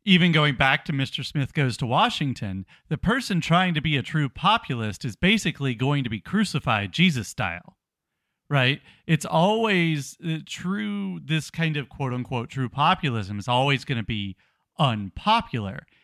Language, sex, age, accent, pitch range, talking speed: English, male, 40-59, American, 125-170 Hz, 155 wpm